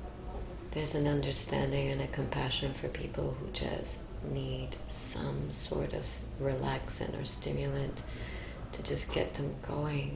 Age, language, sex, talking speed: 30-49, English, female, 130 wpm